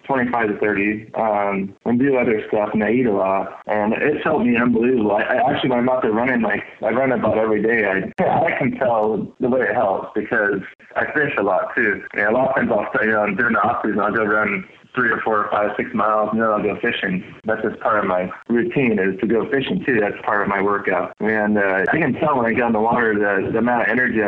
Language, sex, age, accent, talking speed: English, male, 20-39, American, 265 wpm